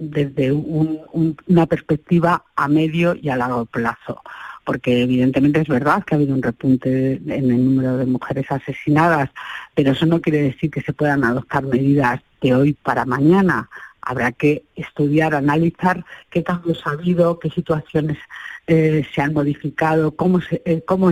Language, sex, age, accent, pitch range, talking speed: Spanish, female, 40-59, Spanish, 135-160 Hz, 155 wpm